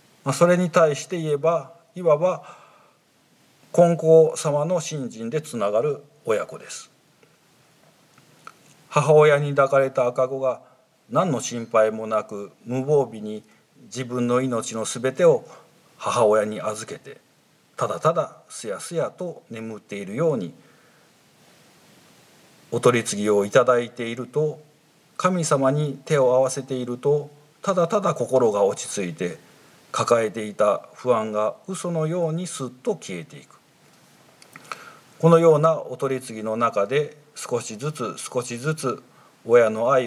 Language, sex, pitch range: Japanese, male, 120-160 Hz